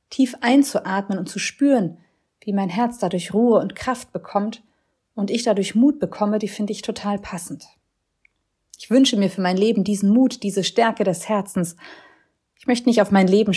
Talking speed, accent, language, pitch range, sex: 180 wpm, German, German, 185-235 Hz, female